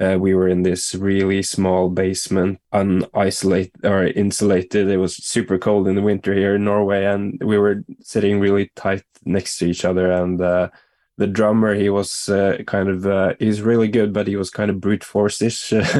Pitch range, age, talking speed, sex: 90-100 Hz, 10-29, 195 wpm, male